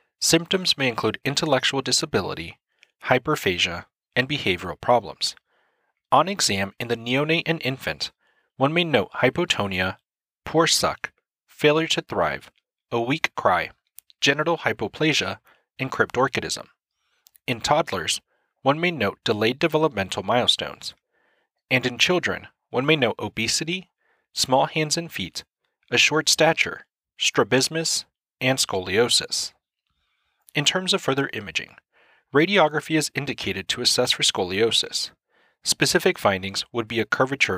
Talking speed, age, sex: 120 wpm, 30-49, male